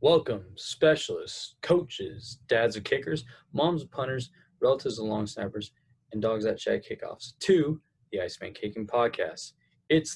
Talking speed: 140 wpm